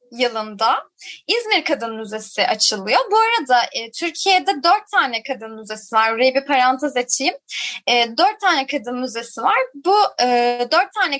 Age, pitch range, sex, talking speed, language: 20-39, 230-305 Hz, female, 150 wpm, Turkish